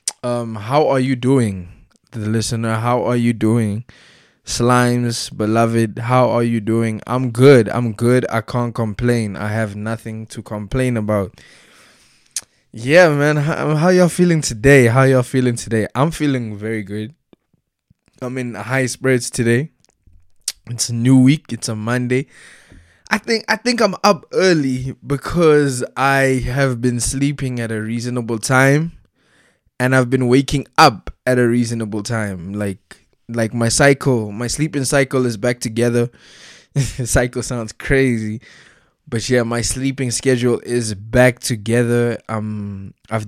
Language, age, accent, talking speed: English, 20-39, South African, 145 wpm